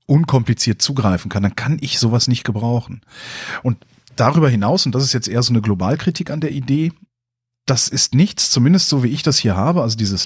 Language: German